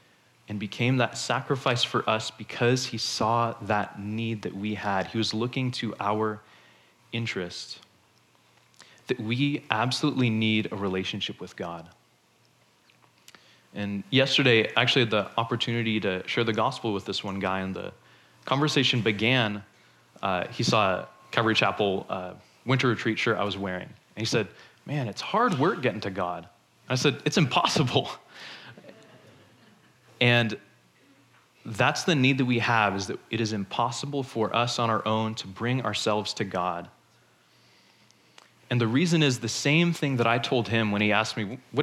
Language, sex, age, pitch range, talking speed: English, male, 20-39, 105-125 Hz, 160 wpm